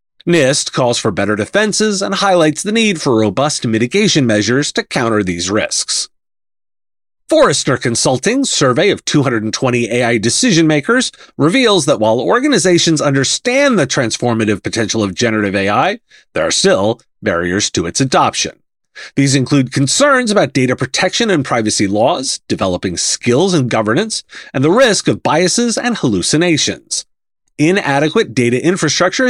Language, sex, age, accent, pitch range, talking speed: English, male, 30-49, American, 120-185 Hz, 135 wpm